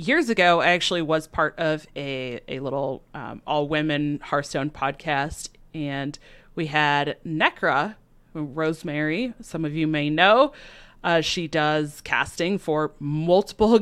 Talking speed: 135 wpm